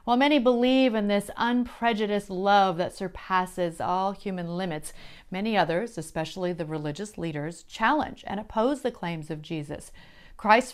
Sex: female